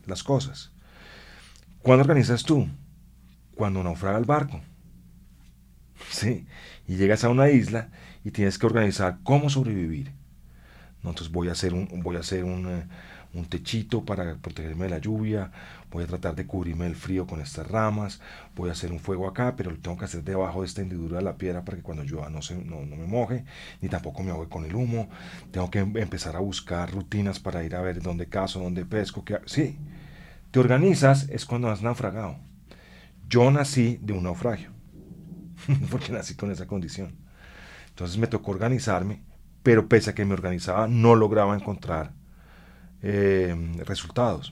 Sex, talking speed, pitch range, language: male, 175 wpm, 85-115 Hz, Spanish